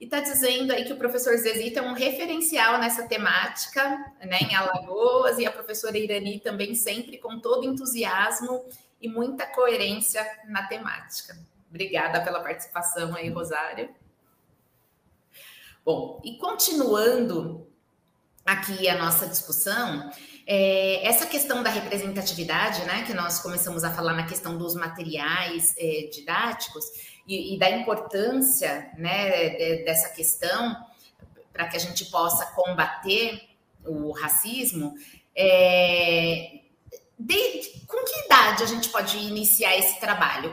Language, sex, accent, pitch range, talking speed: Portuguese, female, Brazilian, 175-235 Hz, 120 wpm